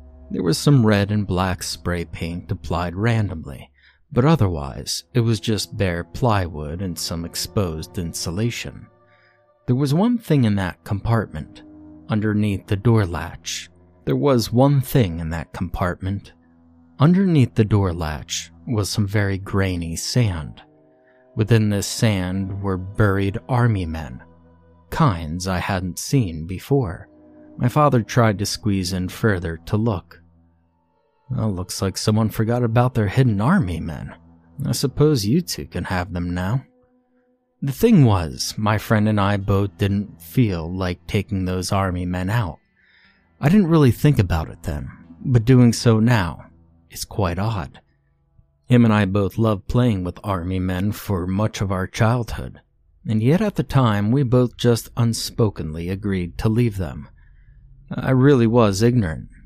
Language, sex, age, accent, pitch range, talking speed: English, male, 30-49, American, 85-120 Hz, 150 wpm